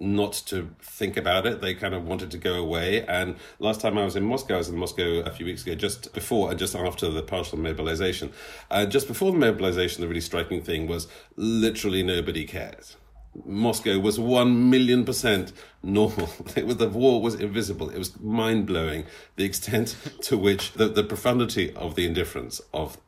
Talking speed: 195 wpm